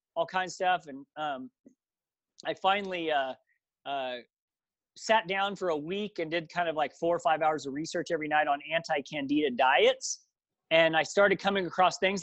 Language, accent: English, American